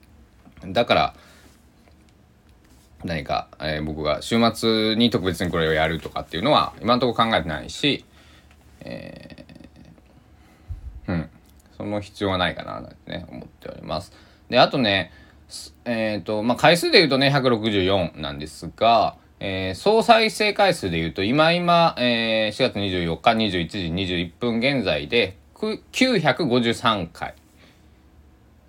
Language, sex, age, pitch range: Japanese, male, 20-39, 80-115 Hz